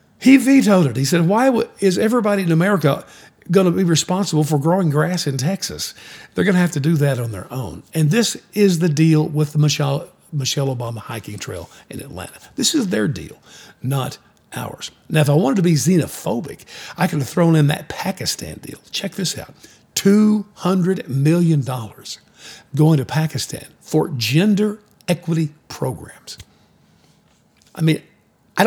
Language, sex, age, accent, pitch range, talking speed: English, male, 50-69, American, 135-185 Hz, 165 wpm